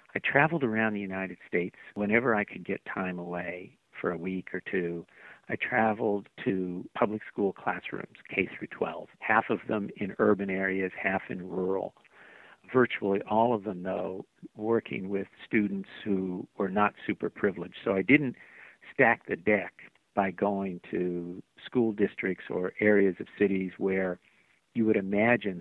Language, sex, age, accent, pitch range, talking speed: English, male, 50-69, American, 95-110 Hz, 155 wpm